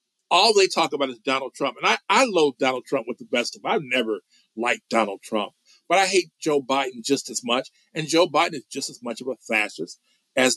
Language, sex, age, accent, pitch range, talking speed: English, male, 50-69, American, 145-235 Hz, 235 wpm